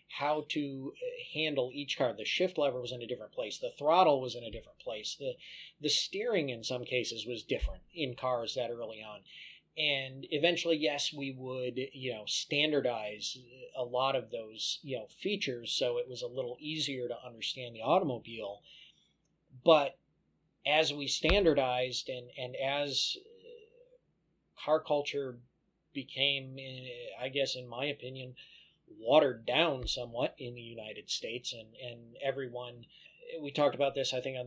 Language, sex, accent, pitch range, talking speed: English, male, American, 125-155 Hz, 155 wpm